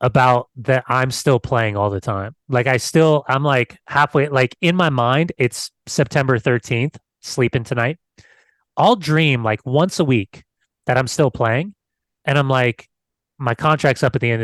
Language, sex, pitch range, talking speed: English, male, 110-145 Hz, 175 wpm